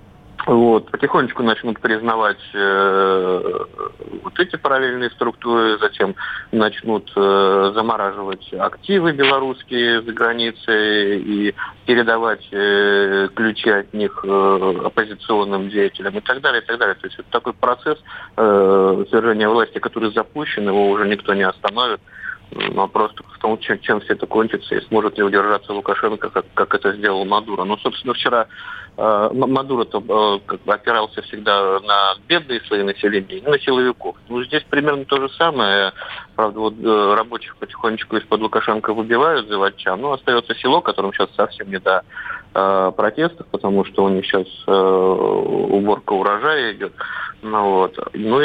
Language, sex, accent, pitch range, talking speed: Russian, male, native, 100-130 Hz, 140 wpm